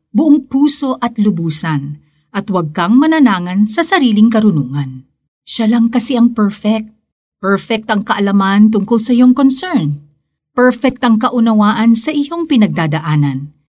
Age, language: 50-69, Filipino